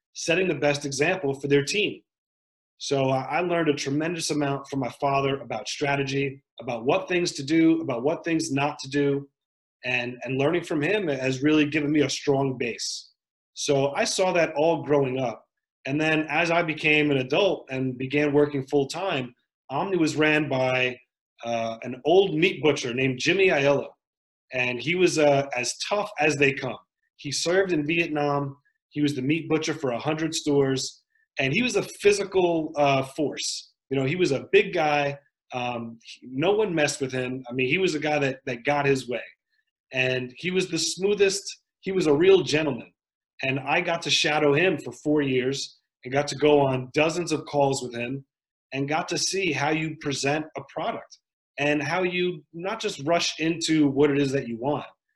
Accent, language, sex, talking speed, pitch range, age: American, English, male, 190 wpm, 135-165 Hz, 30-49